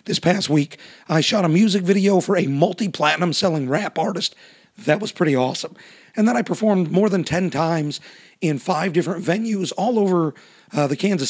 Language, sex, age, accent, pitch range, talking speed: English, male, 40-59, American, 160-205 Hz, 185 wpm